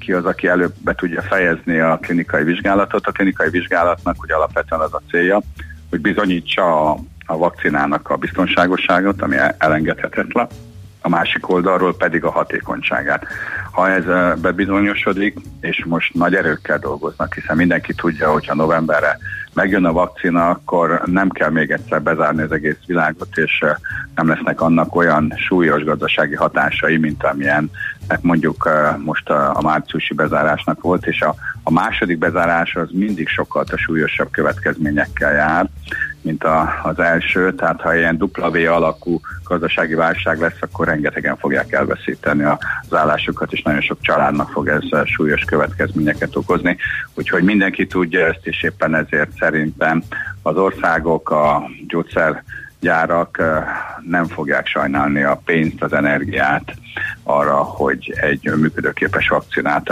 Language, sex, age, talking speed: Hungarian, male, 50-69, 135 wpm